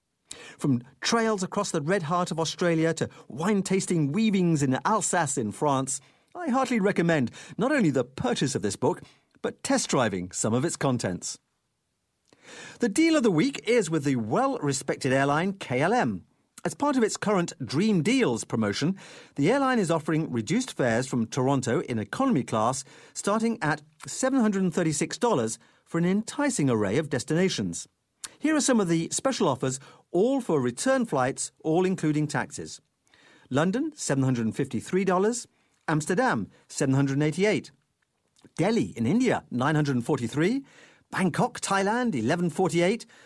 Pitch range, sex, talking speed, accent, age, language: 135-220 Hz, male, 130 wpm, British, 50-69, English